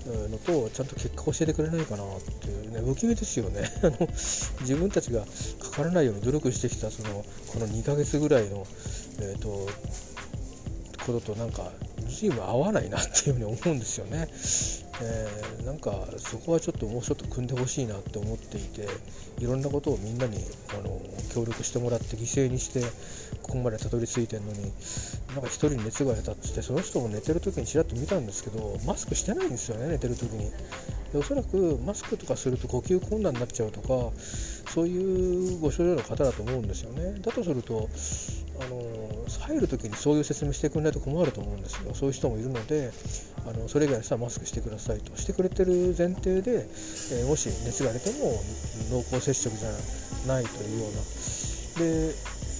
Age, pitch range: 40-59, 110-140 Hz